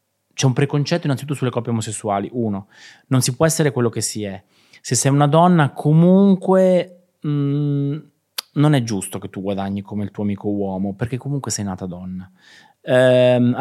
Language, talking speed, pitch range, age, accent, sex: Italian, 170 wpm, 105-145 Hz, 20-39, native, male